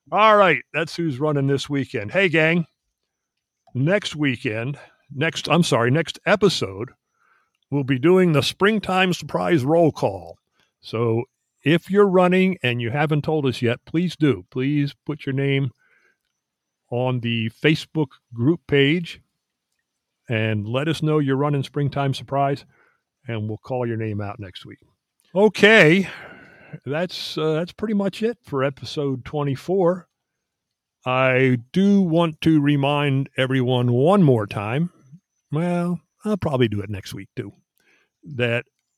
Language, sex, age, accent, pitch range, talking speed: English, male, 50-69, American, 125-165 Hz, 135 wpm